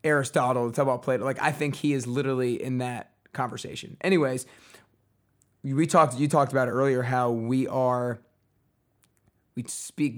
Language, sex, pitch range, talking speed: English, male, 120-140 Hz, 160 wpm